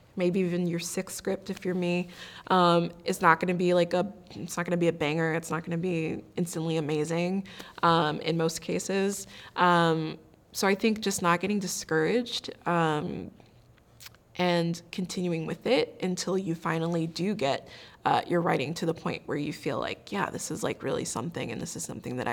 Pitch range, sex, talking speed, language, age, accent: 170-195 Hz, female, 190 wpm, English, 20-39, American